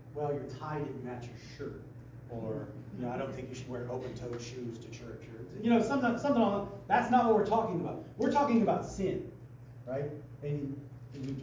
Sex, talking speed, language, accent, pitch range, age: male, 190 wpm, English, American, 125-160 Hz, 40-59